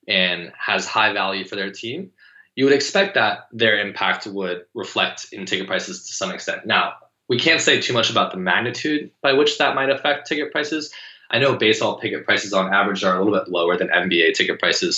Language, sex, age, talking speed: English, male, 20-39, 210 wpm